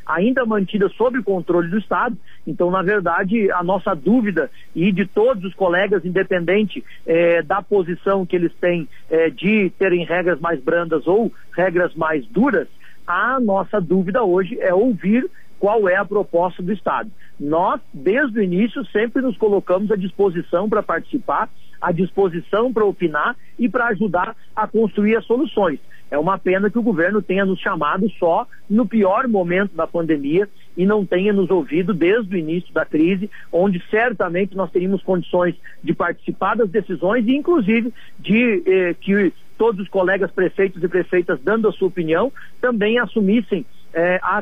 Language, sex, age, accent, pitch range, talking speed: Portuguese, male, 50-69, Brazilian, 180-215 Hz, 165 wpm